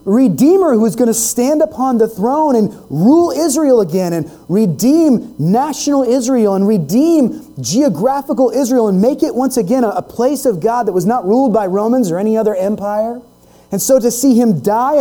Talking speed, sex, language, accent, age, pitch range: 185 wpm, male, English, American, 30-49, 190-255 Hz